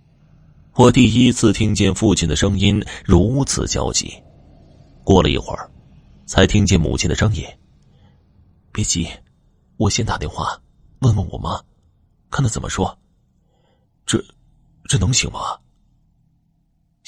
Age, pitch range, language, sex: 30-49, 85-110 Hz, Chinese, male